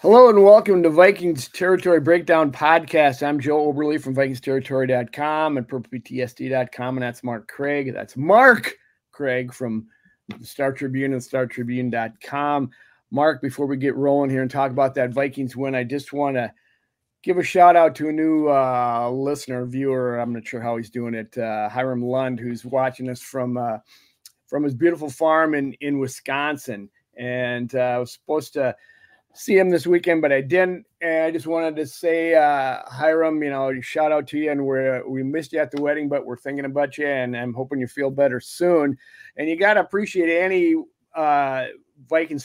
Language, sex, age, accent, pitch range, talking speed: English, male, 40-59, American, 125-160 Hz, 180 wpm